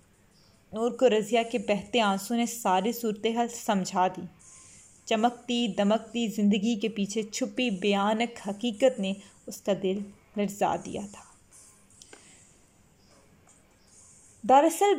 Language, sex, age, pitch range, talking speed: Urdu, female, 20-39, 205-285 Hz, 110 wpm